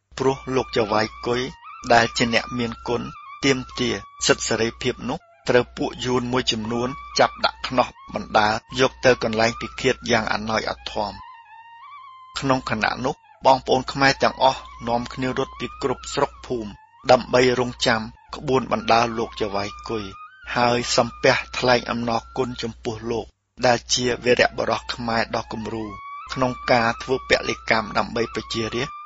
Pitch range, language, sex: 115-135 Hz, English, male